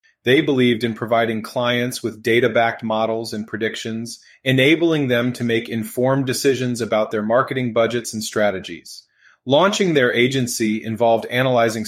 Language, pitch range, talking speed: English, 110-135 Hz, 135 wpm